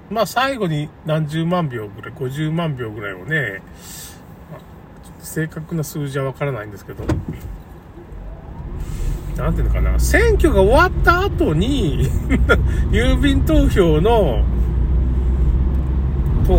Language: Japanese